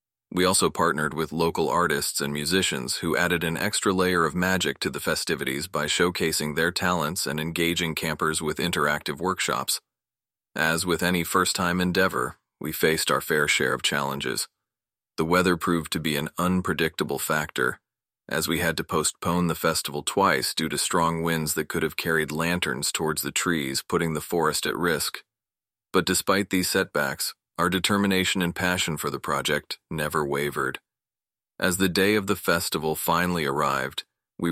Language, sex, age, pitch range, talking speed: English, male, 30-49, 80-90 Hz, 165 wpm